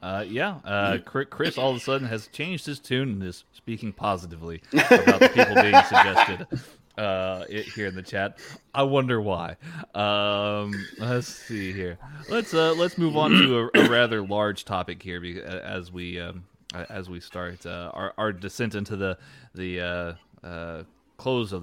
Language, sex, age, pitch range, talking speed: English, male, 30-49, 90-125 Hz, 170 wpm